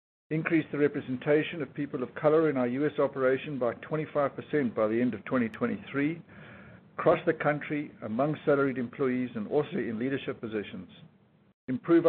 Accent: South African